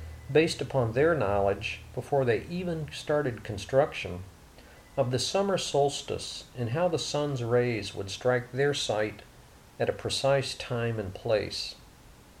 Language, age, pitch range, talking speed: English, 50-69, 105-140 Hz, 135 wpm